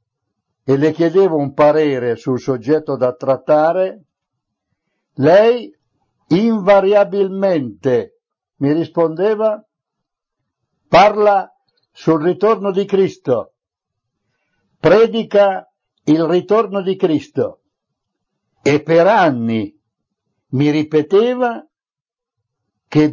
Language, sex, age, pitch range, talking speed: Italian, male, 60-79, 130-200 Hz, 75 wpm